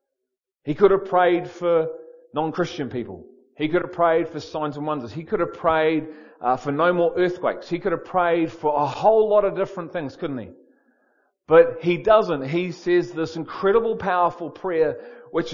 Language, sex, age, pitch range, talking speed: English, male, 40-59, 160-195 Hz, 180 wpm